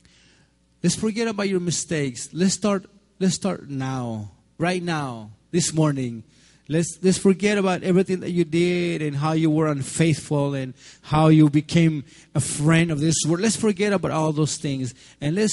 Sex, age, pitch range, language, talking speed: male, 30-49, 125-185 Hz, English, 170 wpm